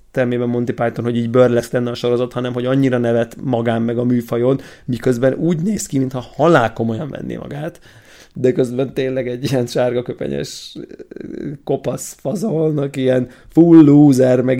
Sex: male